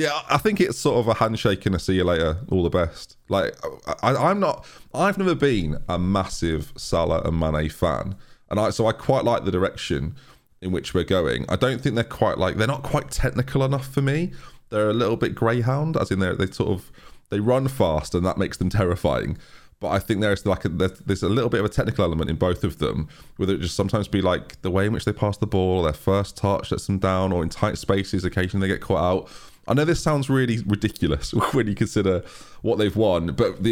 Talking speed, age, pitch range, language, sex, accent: 230 wpm, 20-39, 85-110 Hz, English, male, British